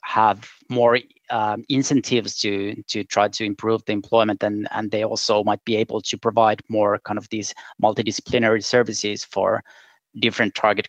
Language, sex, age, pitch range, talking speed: Finnish, male, 30-49, 110-125 Hz, 160 wpm